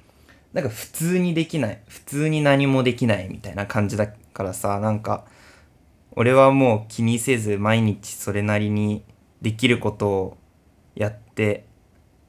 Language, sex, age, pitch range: Japanese, male, 20-39, 100-125 Hz